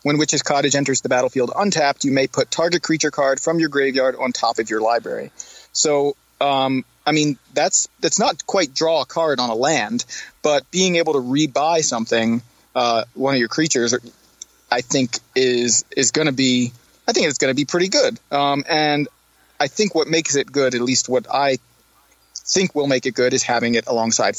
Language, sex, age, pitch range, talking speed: English, male, 30-49, 120-150 Hz, 200 wpm